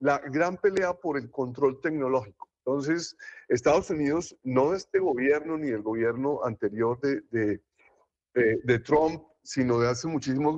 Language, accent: Spanish, Colombian